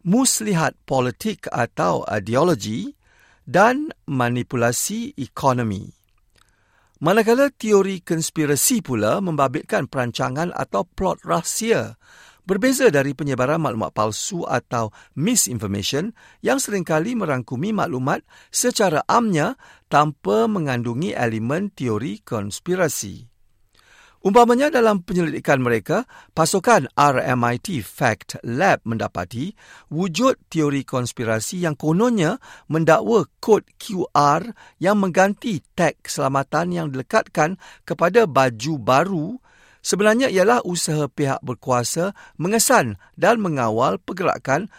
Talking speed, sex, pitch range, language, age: 90 wpm, male, 125-205 Hz, Malay, 50-69